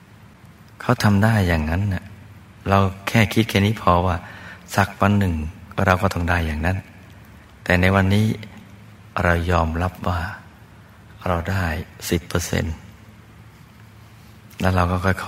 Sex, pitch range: male, 90-105 Hz